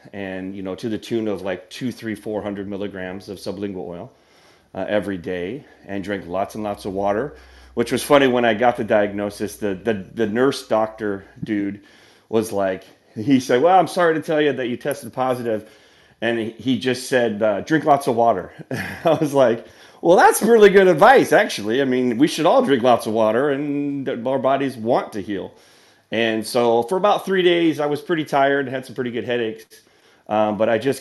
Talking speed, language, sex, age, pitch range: 205 wpm, English, male, 30-49, 100-130 Hz